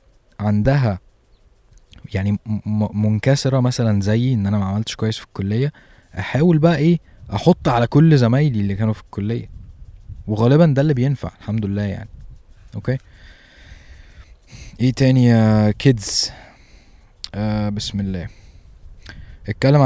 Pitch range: 100-120 Hz